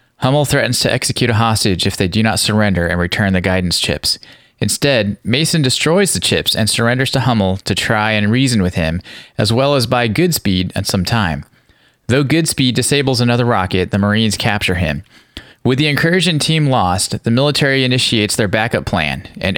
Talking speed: 185 wpm